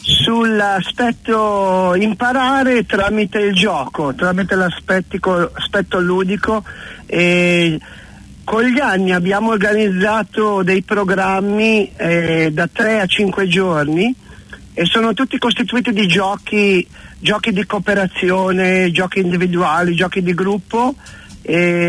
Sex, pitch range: male, 170-210 Hz